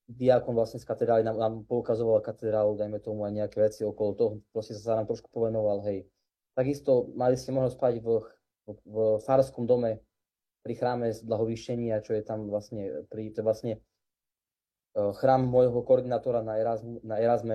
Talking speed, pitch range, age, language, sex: 170 wpm, 110-130 Hz, 20-39, Slovak, male